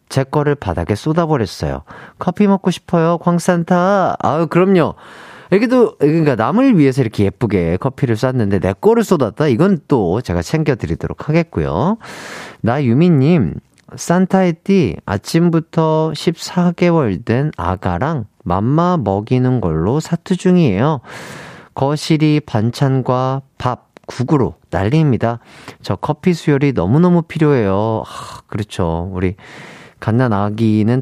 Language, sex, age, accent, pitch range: Korean, male, 40-59, native, 105-165 Hz